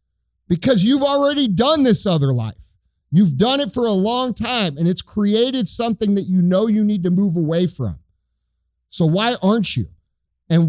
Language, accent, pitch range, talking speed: English, American, 155-220 Hz, 180 wpm